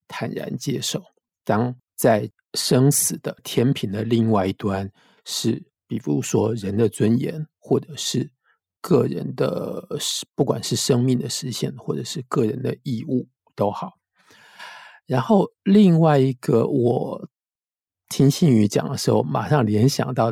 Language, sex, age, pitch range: Chinese, male, 50-69, 110-130 Hz